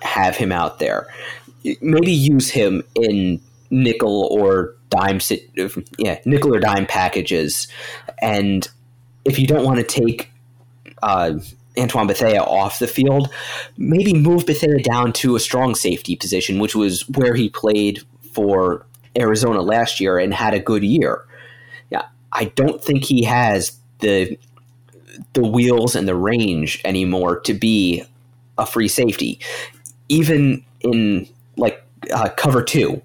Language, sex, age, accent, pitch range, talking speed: English, male, 30-49, American, 110-135 Hz, 140 wpm